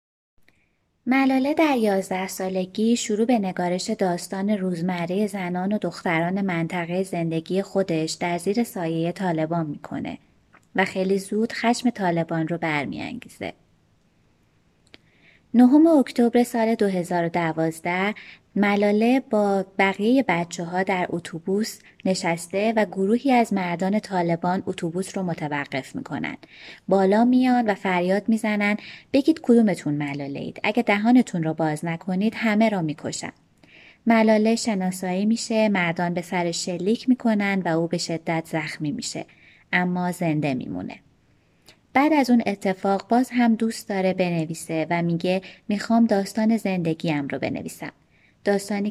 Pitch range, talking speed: 170-220 Hz, 120 wpm